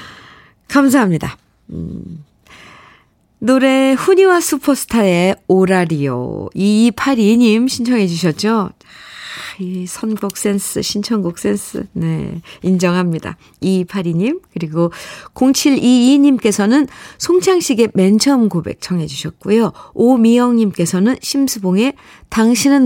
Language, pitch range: Korean, 155-240 Hz